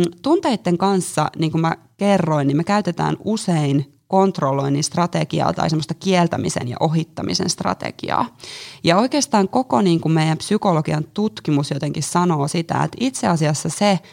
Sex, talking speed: female, 135 wpm